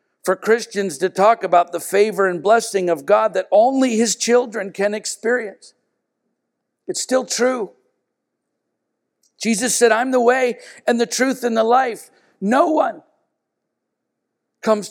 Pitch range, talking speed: 215-255 Hz, 135 wpm